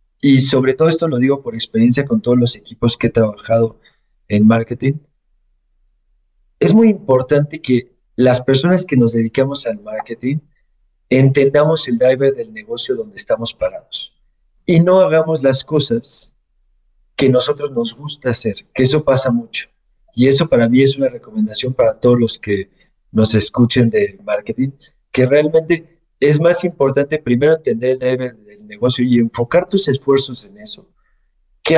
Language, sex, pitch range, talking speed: Spanish, male, 120-160 Hz, 155 wpm